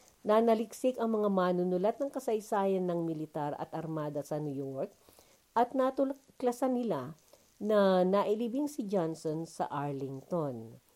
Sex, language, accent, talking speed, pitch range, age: female, Filipino, native, 125 wpm, 160-240 Hz, 50-69